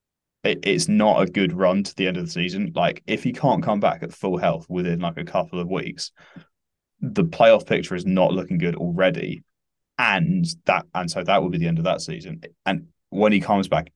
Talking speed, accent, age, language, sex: 220 wpm, British, 20-39, English, male